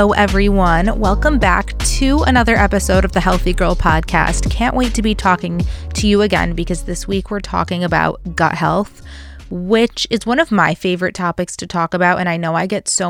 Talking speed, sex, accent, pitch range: 200 wpm, female, American, 165-200 Hz